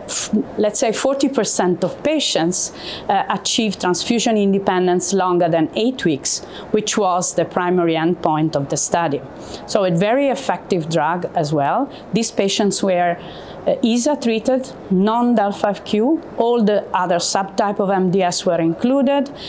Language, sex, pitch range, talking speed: English, female, 175-225 Hz, 135 wpm